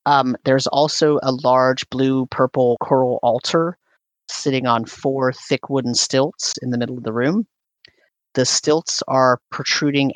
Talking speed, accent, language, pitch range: 140 wpm, American, English, 120-135 Hz